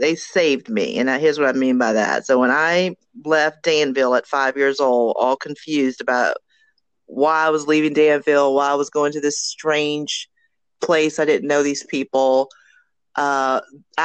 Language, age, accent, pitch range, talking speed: English, 40-59, American, 135-165 Hz, 175 wpm